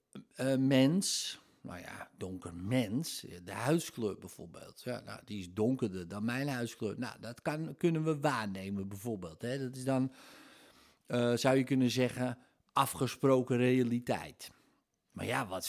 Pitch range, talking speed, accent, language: 105-135 Hz, 145 wpm, Dutch, Dutch